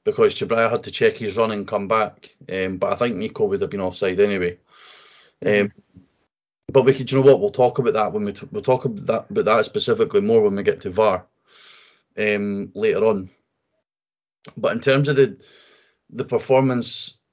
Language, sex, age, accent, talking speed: English, male, 30-49, British, 195 wpm